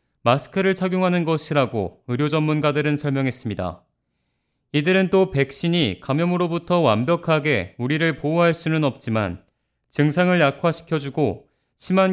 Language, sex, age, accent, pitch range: Korean, male, 30-49, native, 130-170 Hz